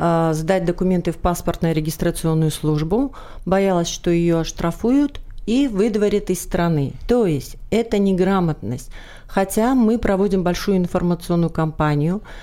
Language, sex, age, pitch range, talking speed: Russian, female, 40-59, 170-215 Hz, 115 wpm